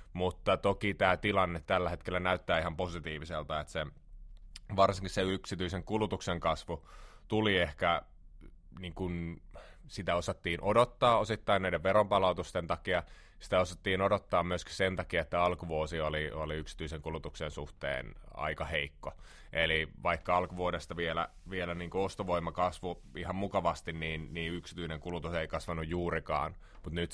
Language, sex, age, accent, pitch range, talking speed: Finnish, male, 30-49, native, 80-95 Hz, 125 wpm